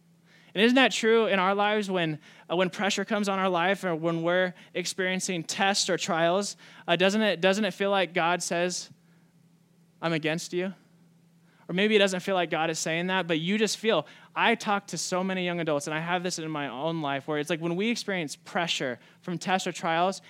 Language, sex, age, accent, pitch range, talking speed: English, male, 20-39, American, 145-180 Hz, 220 wpm